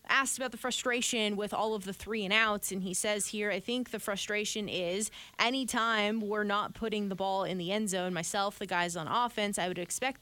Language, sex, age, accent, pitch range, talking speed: English, female, 20-39, American, 195-235 Hz, 225 wpm